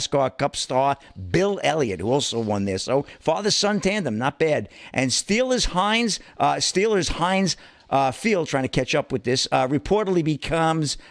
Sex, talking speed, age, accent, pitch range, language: male, 175 wpm, 50-69, American, 135-180 Hz, English